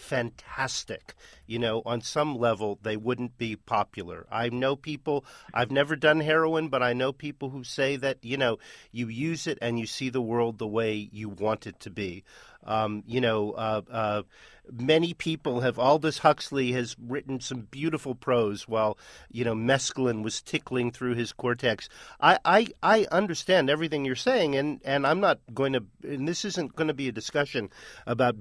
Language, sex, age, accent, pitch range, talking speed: English, male, 50-69, American, 120-150 Hz, 180 wpm